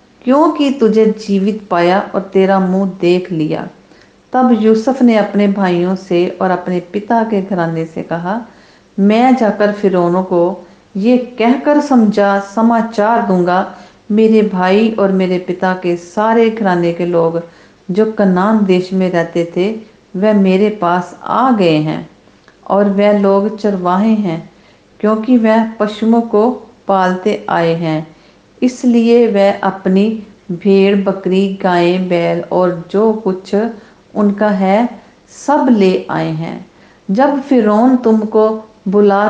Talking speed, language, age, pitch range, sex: 130 wpm, English, 50-69, 185-230 Hz, female